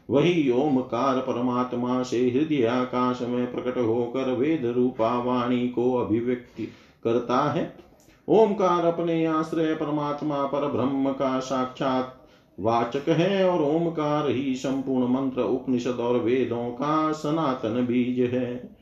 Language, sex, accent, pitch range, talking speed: Hindi, male, native, 125-150 Hz, 120 wpm